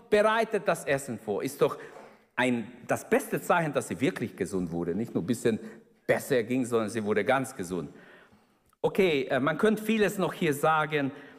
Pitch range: 130-175 Hz